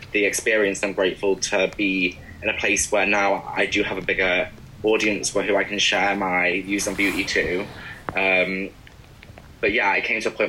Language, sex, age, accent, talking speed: English, male, 10-29, British, 200 wpm